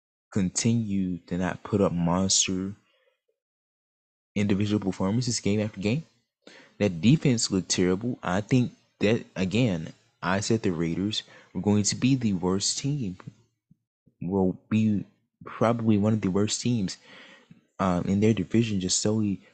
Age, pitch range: 20-39, 85-105 Hz